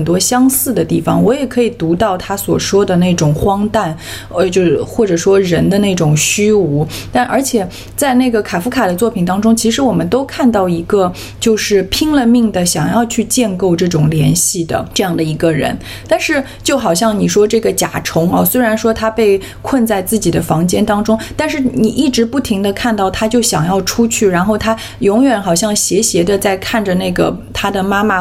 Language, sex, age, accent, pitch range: Chinese, female, 20-39, native, 175-225 Hz